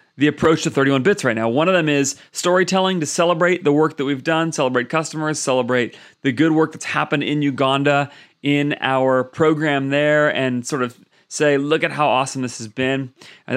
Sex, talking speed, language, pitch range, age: male, 200 wpm, English, 130-160 Hz, 30-49